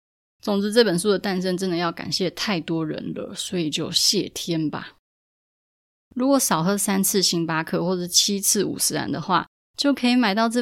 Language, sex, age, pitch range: Chinese, female, 20-39, 165-205 Hz